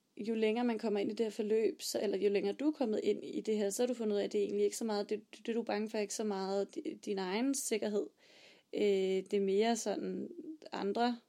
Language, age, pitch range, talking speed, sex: Danish, 30-49, 210-245 Hz, 280 wpm, female